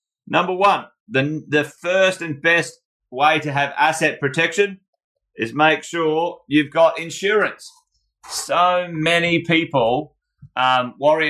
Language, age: English, 30-49